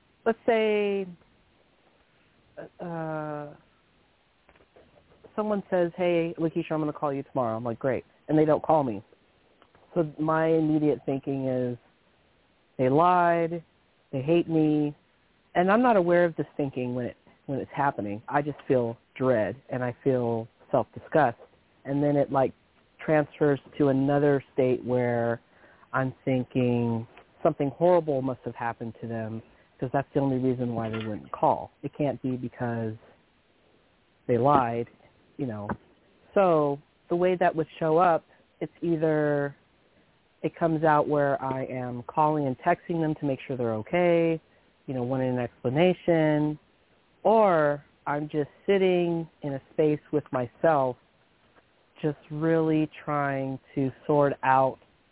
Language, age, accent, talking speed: English, 40-59, American, 140 wpm